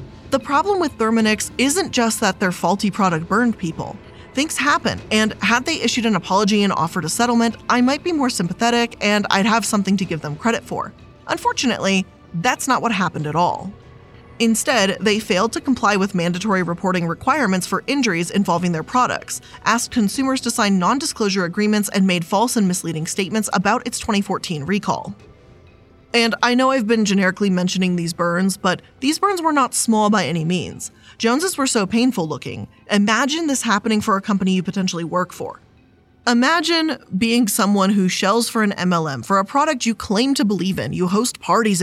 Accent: American